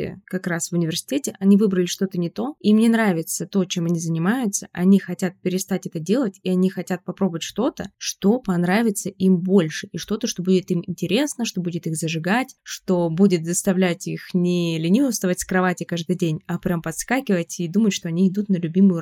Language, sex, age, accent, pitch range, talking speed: Russian, female, 20-39, native, 175-200 Hz, 190 wpm